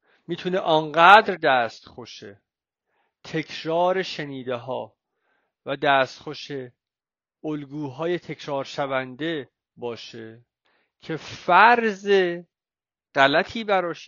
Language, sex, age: Persian, male, 50-69